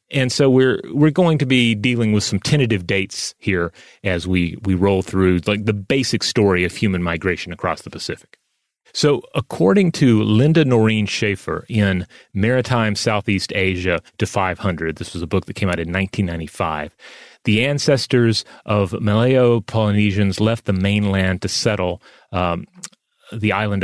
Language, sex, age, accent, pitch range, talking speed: English, male, 30-49, American, 95-120 Hz, 155 wpm